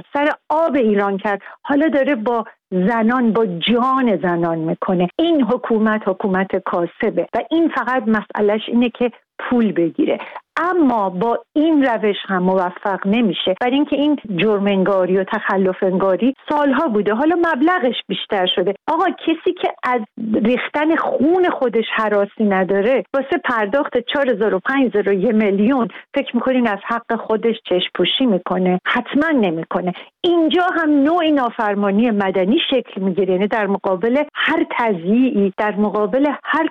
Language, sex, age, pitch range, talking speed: Persian, female, 50-69, 195-265 Hz, 135 wpm